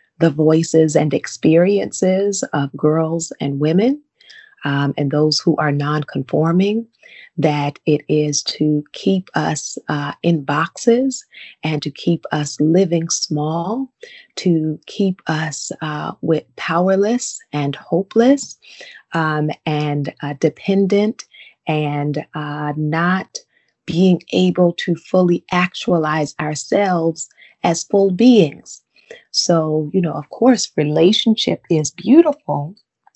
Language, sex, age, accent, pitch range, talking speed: English, female, 30-49, American, 155-200 Hz, 110 wpm